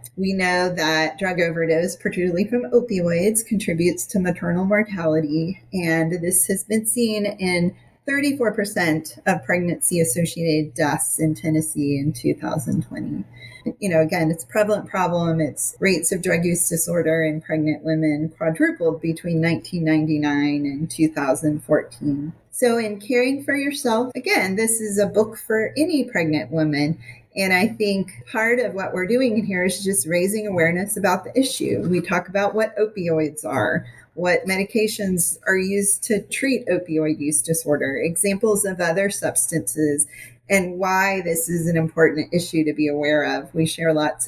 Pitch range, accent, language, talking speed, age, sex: 160-200 Hz, American, English, 150 wpm, 30-49, female